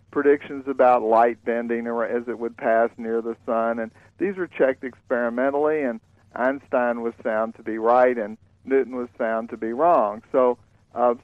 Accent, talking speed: American, 170 wpm